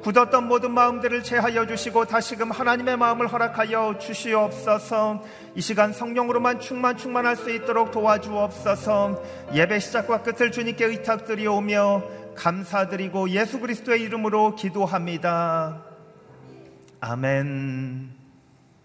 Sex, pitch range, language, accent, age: male, 125-200 Hz, Korean, native, 40-59